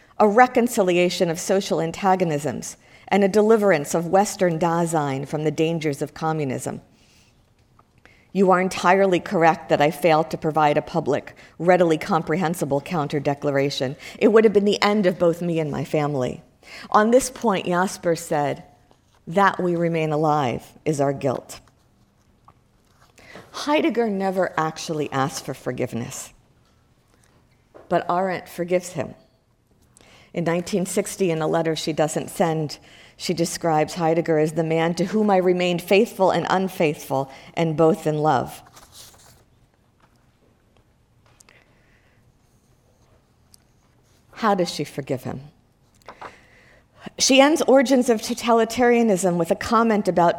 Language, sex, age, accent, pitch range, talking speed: English, female, 50-69, American, 150-195 Hz, 125 wpm